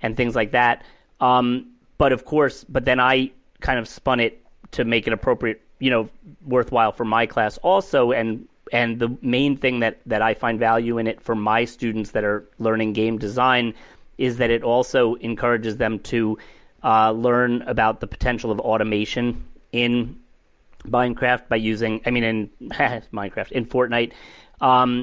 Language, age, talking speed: English, 30-49, 170 wpm